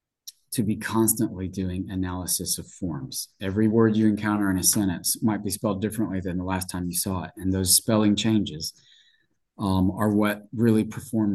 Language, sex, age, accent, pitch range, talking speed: English, male, 30-49, American, 95-105 Hz, 180 wpm